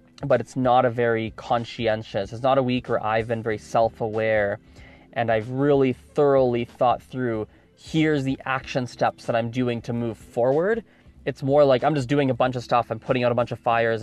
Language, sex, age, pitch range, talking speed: English, male, 20-39, 110-130 Hz, 205 wpm